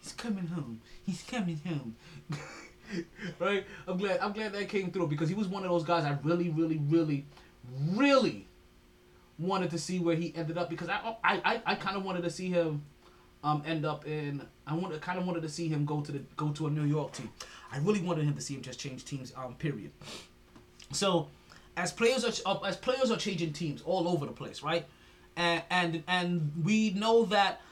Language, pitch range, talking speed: English, 135-185 Hz, 210 wpm